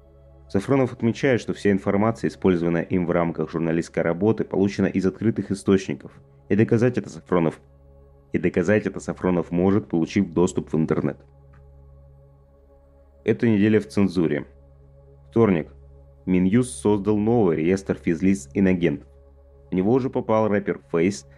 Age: 30-49